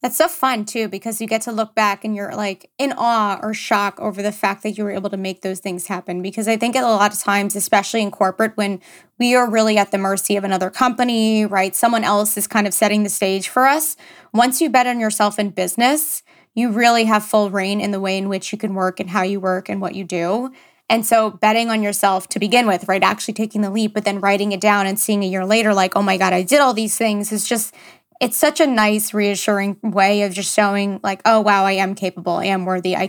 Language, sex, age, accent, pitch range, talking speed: English, female, 20-39, American, 195-225 Hz, 255 wpm